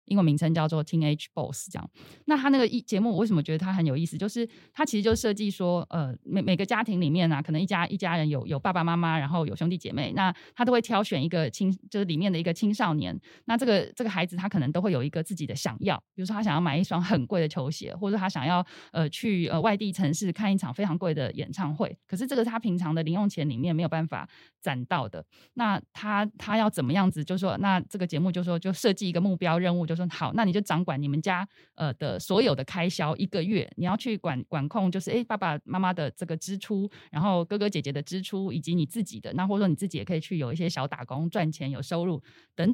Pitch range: 160-205 Hz